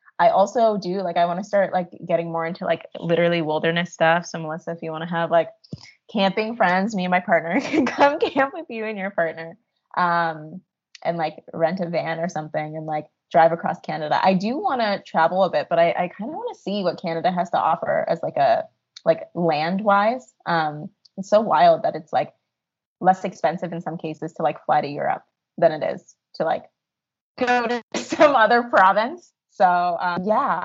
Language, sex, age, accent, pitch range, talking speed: English, female, 20-39, American, 165-210 Hz, 210 wpm